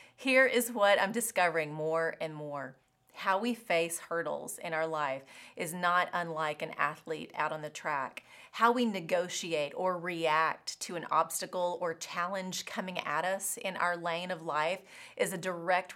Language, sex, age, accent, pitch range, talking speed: English, female, 30-49, American, 170-230 Hz, 170 wpm